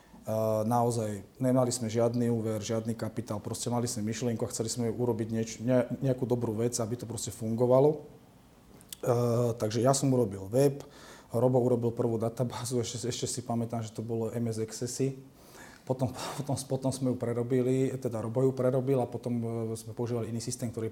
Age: 30-49